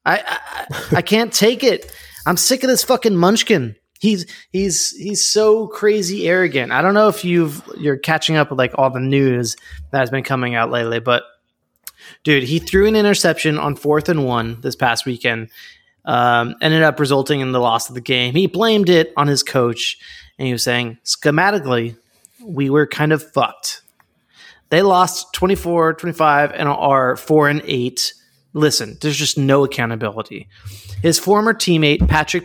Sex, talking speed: male, 175 wpm